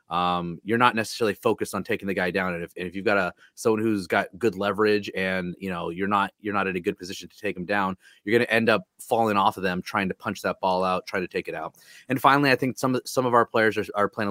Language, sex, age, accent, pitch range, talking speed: English, male, 30-49, American, 95-105 Hz, 290 wpm